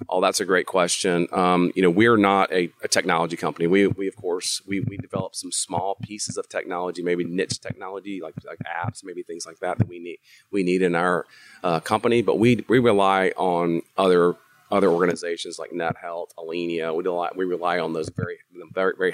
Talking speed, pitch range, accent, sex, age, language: 205 wpm, 90-120 Hz, American, male, 40-59, English